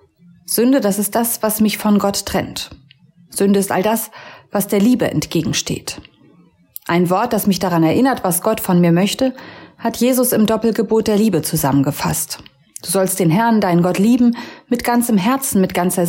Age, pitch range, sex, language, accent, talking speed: 30-49, 175-230 Hz, female, German, German, 175 wpm